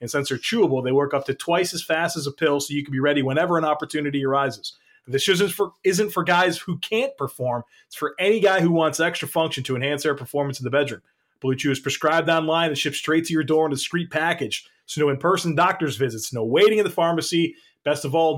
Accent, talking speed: American, 240 wpm